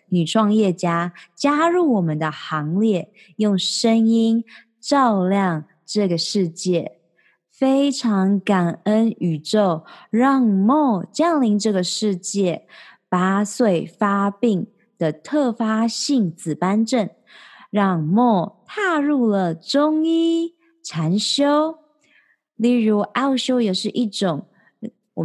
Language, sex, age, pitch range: Chinese, female, 20-39, 180-245 Hz